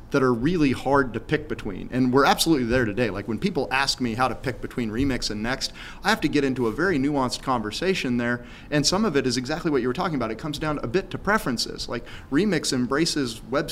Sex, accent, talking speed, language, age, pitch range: male, American, 245 wpm, English, 30-49, 115-150 Hz